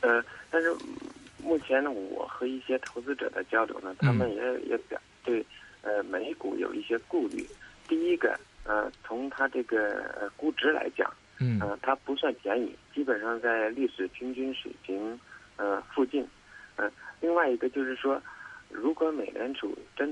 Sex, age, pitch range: male, 50-69, 110-145 Hz